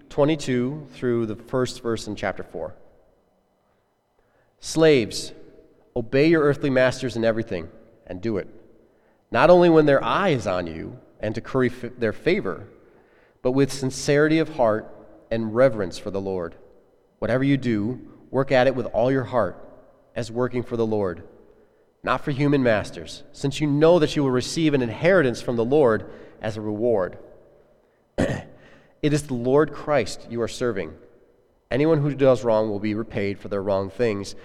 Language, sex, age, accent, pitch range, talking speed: English, male, 30-49, American, 115-145 Hz, 165 wpm